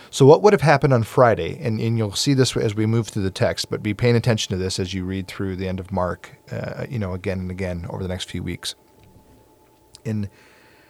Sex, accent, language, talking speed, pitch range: male, American, English, 240 wpm, 95-120 Hz